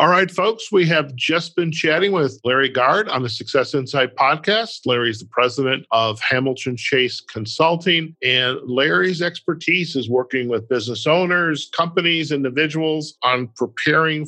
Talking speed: 145 wpm